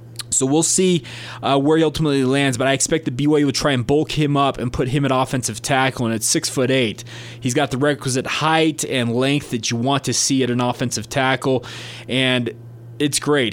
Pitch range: 120-145 Hz